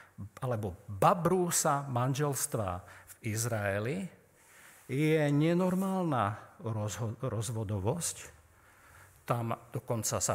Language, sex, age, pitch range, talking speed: Slovak, male, 50-69, 105-140 Hz, 75 wpm